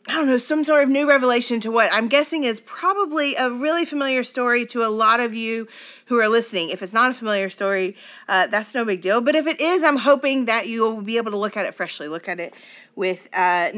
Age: 30-49